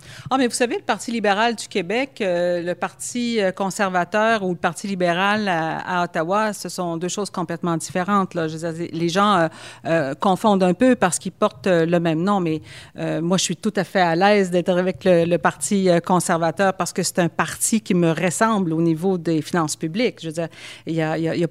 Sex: female